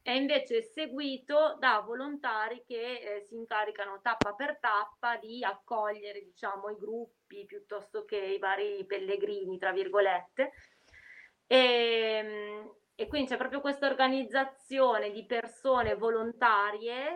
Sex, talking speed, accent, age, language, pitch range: female, 120 wpm, native, 20-39, Italian, 190-240 Hz